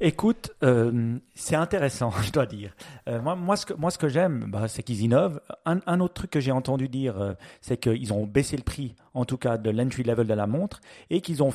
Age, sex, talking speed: 40-59, male, 245 wpm